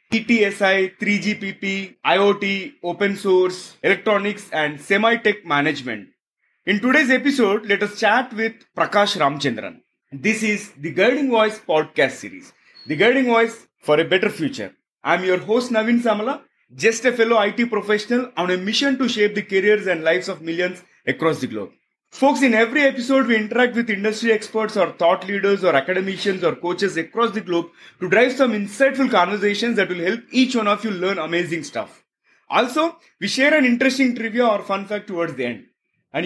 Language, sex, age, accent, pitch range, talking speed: English, male, 30-49, Indian, 185-240 Hz, 170 wpm